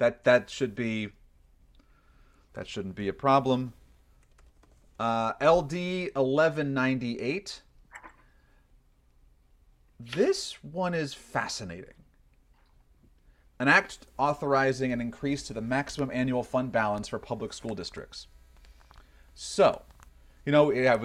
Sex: male